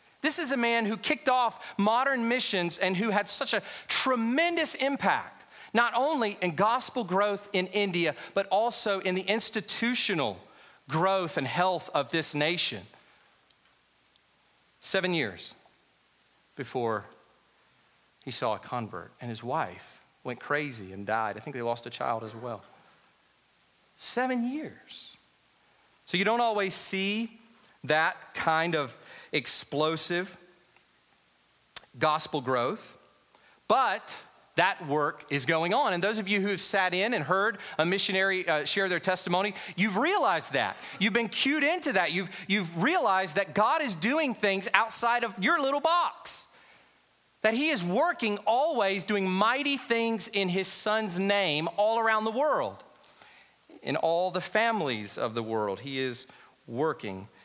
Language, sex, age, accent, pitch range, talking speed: English, male, 40-59, American, 155-225 Hz, 145 wpm